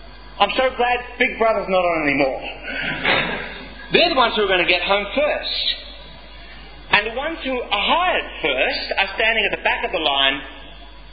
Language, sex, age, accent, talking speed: English, male, 40-59, Australian, 180 wpm